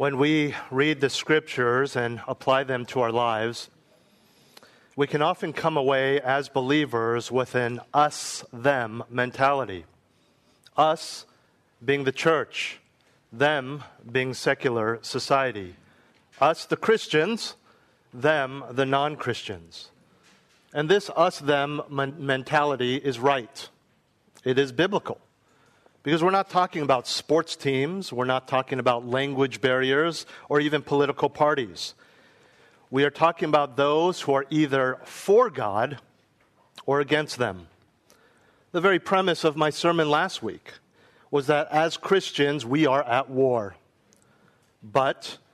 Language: English